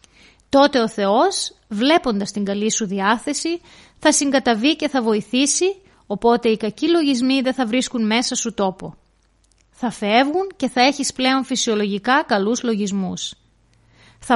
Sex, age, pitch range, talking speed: female, 30-49, 205-285 Hz, 140 wpm